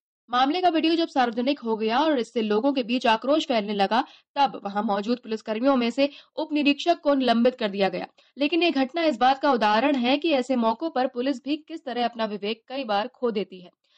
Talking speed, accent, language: 220 wpm, native, Hindi